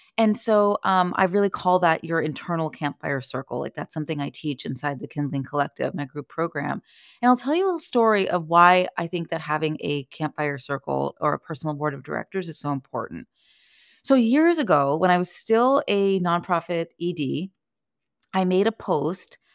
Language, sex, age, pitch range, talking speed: English, female, 30-49, 155-205 Hz, 190 wpm